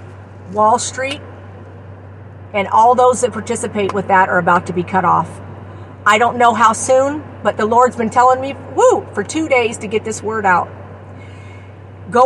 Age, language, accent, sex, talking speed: 50-69, English, American, female, 175 wpm